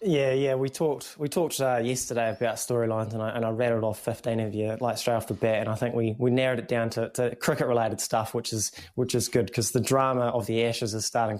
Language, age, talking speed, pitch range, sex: English, 20-39, 265 wpm, 110-125 Hz, male